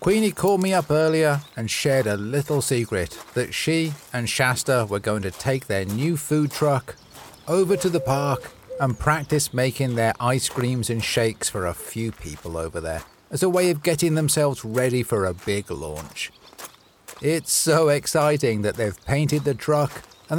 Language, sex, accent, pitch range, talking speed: English, male, British, 110-165 Hz, 175 wpm